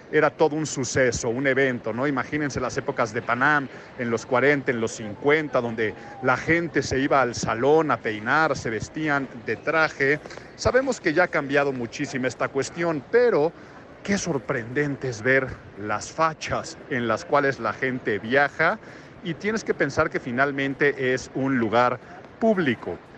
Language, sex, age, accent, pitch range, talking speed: Spanish, male, 50-69, Mexican, 125-155 Hz, 160 wpm